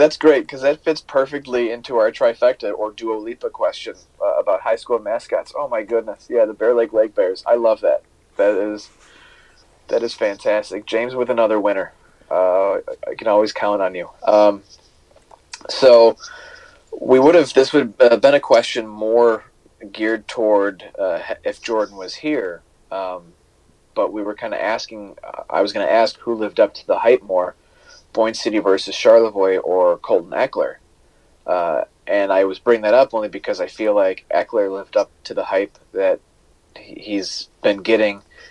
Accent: American